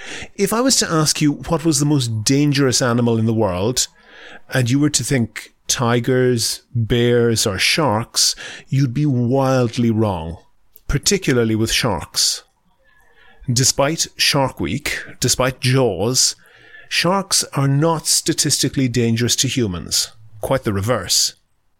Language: English